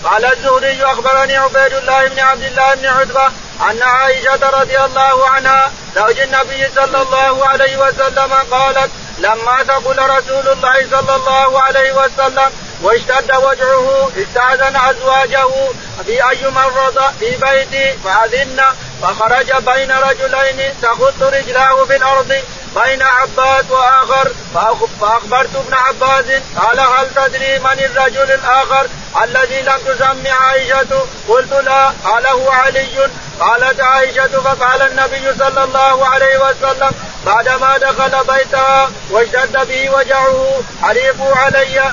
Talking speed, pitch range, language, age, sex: 120 wpm, 265-270 Hz, Arabic, 50-69, male